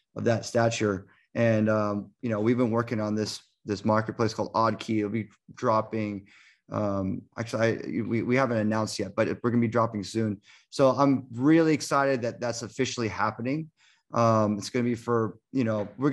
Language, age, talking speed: English, 30-49, 185 wpm